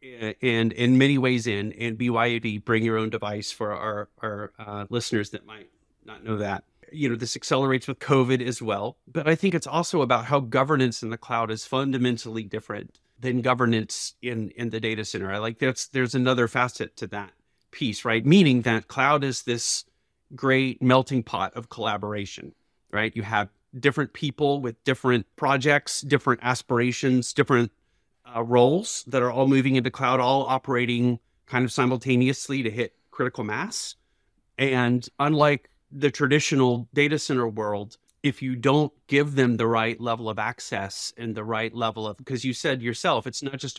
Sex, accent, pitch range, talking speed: male, American, 115-135 Hz, 175 wpm